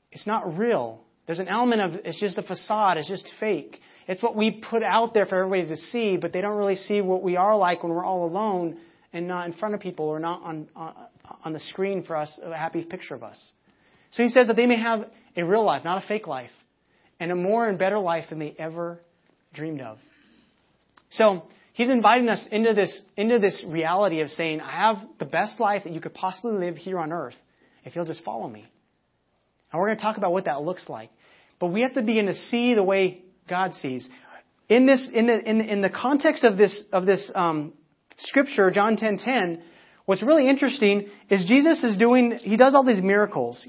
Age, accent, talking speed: 30-49, American, 220 wpm